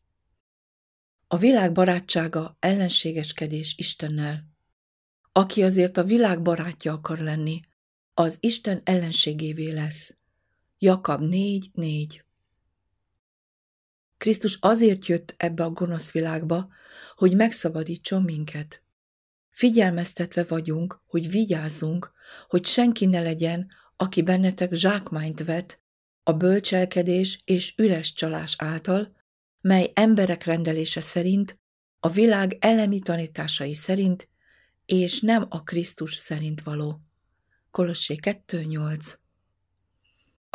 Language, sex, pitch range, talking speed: Hungarian, female, 155-185 Hz, 95 wpm